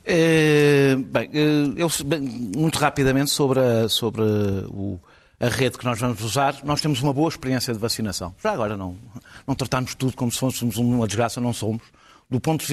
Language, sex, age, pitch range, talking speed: Portuguese, male, 50-69, 115-140 Hz, 190 wpm